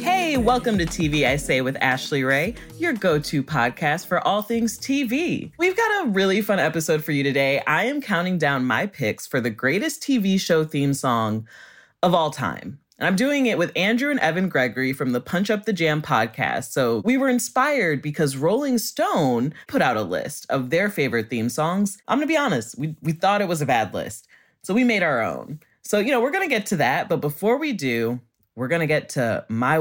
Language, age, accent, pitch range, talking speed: English, 20-39, American, 140-220 Hz, 220 wpm